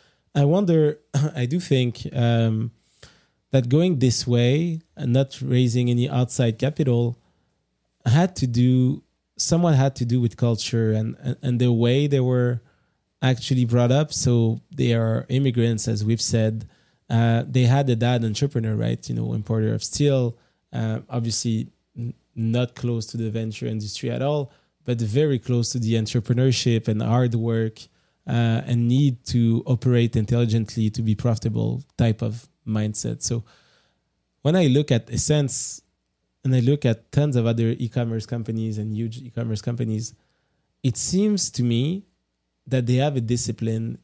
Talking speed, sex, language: 155 wpm, male, English